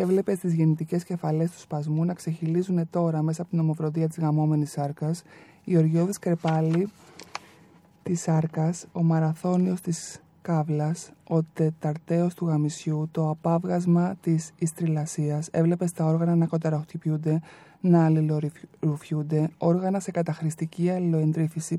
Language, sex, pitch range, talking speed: Greek, male, 160-175 Hz, 120 wpm